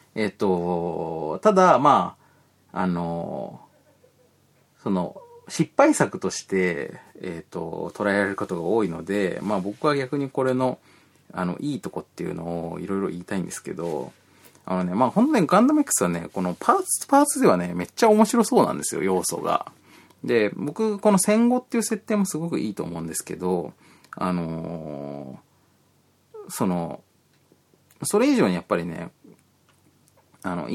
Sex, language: male, Japanese